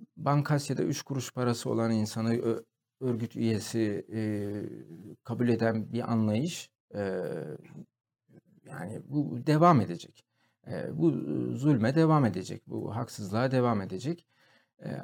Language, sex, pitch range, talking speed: Turkish, male, 115-150 Hz, 115 wpm